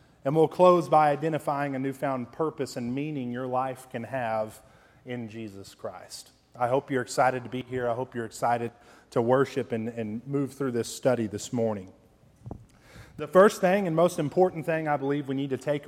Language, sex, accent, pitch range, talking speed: English, male, American, 125-160 Hz, 195 wpm